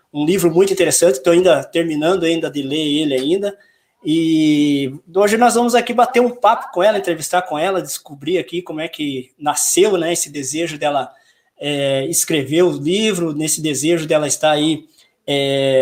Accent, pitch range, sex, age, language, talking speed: Brazilian, 155-190 Hz, male, 20-39, Portuguese, 170 wpm